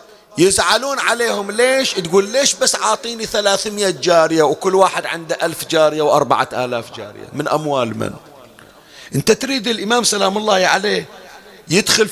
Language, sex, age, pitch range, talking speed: Arabic, male, 40-59, 160-220 Hz, 135 wpm